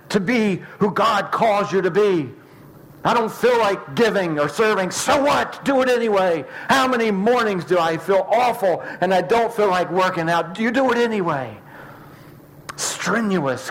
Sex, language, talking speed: male, English, 175 wpm